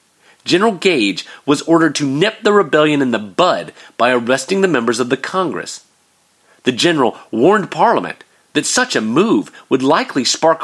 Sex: male